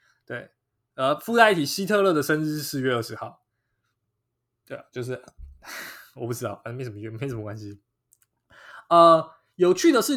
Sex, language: male, Chinese